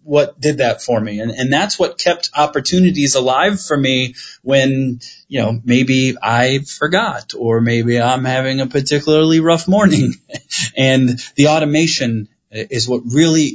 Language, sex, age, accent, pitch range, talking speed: English, male, 20-39, American, 115-135 Hz, 150 wpm